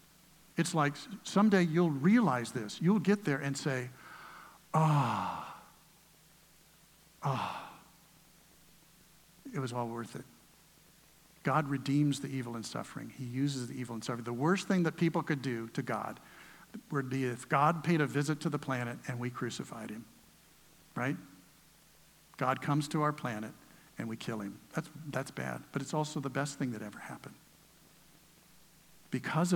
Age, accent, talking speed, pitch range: 50-69, American, 155 wpm, 120-165 Hz